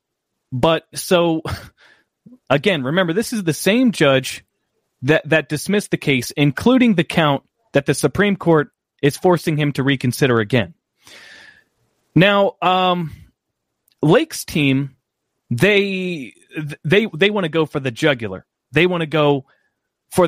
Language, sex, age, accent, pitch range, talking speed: English, male, 30-49, American, 135-180 Hz, 135 wpm